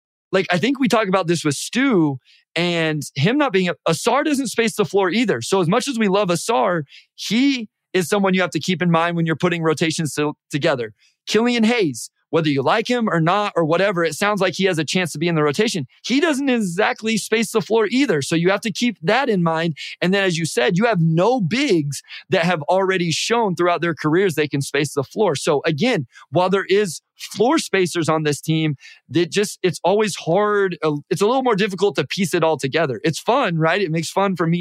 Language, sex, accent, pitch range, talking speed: English, male, American, 150-195 Hz, 230 wpm